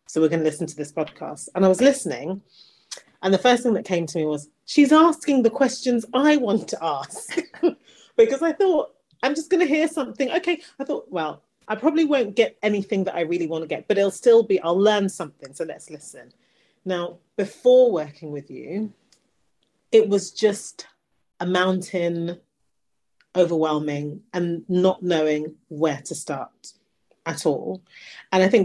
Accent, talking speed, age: British, 180 wpm, 30-49